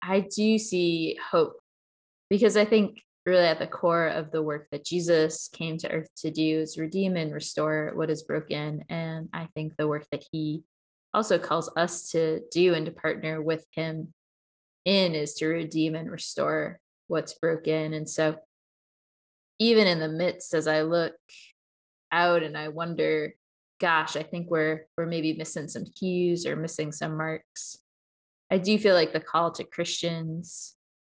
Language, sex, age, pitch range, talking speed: English, female, 20-39, 155-175 Hz, 170 wpm